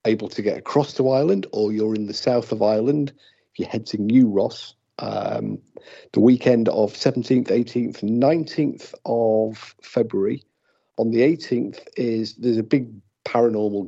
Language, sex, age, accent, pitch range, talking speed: English, male, 50-69, British, 105-125 Hz, 150 wpm